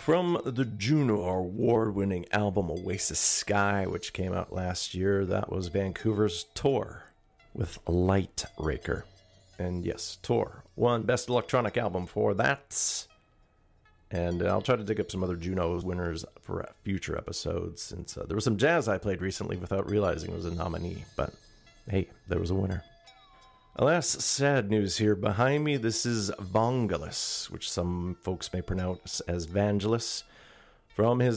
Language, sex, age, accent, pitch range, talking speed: English, male, 40-59, American, 90-110 Hz, 155 wpm